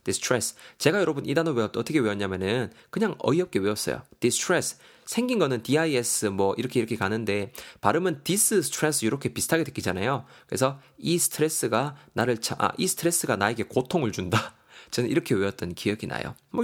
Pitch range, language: 110-155 Hz, Korean